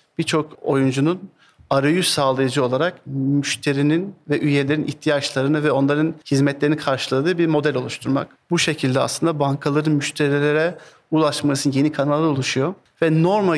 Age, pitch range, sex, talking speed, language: 50-69, 135-160 Hz, male, 120 wpm, Turkish